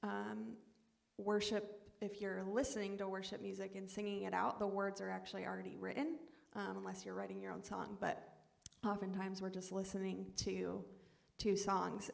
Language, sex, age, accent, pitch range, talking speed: English, female, 20-39, American, 185-205 Hz, 165 wpm